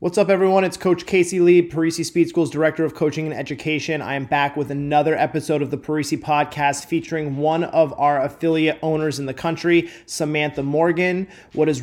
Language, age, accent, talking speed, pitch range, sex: English, 30-49, American, 195 wpm, 150-175 Hz, male